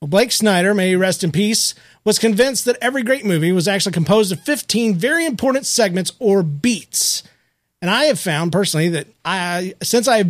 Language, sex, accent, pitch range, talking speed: English, male, American, 165-225 Hz, 200 wpm